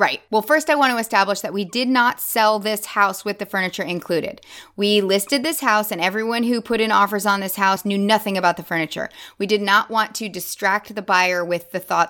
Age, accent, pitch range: 20-39, American, 190-240 Hz